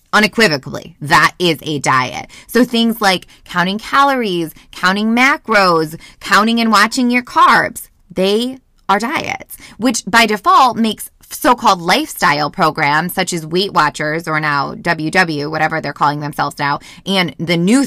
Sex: female